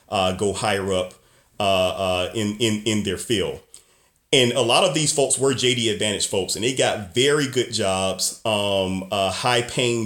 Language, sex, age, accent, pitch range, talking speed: English, male, 30-49, American, 100-130 Hz, 190 wpm